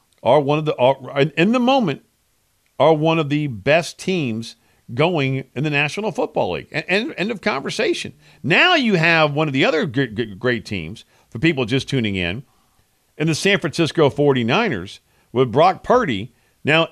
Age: 50-69